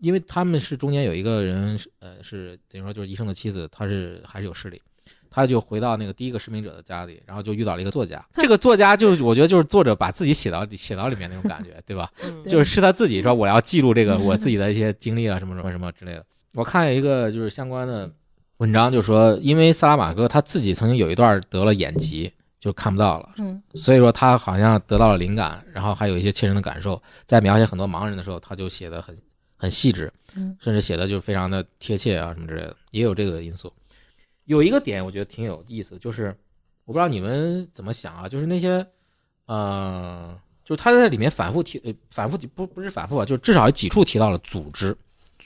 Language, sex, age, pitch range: Chinese, male, 20-39, 95-130 Hz